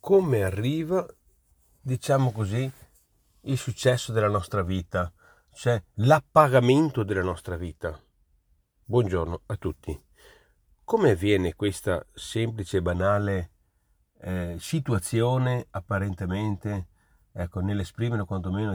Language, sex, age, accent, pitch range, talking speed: Italian, male, 40-59, native, 95-125 Hz, 90 wpm